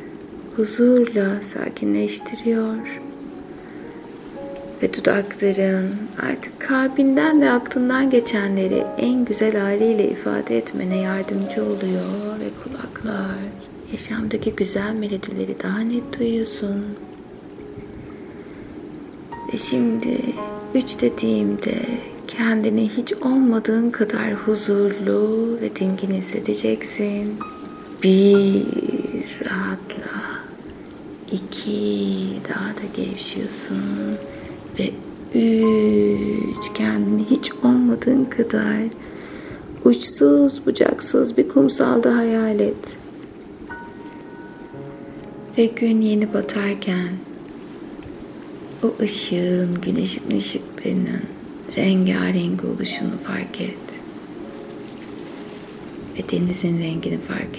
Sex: female